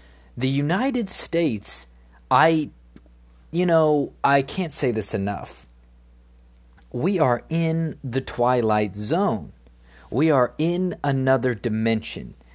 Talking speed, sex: 105 wpm, male